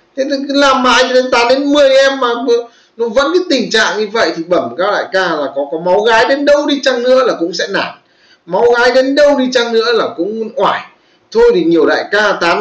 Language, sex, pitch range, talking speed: Vietnamese, male, 210-290 Hz, 245 wpm